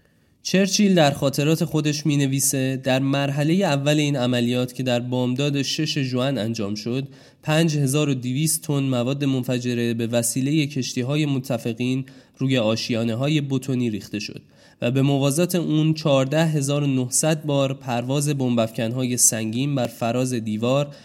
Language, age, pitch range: Persian, 20-39, 120-145 Hz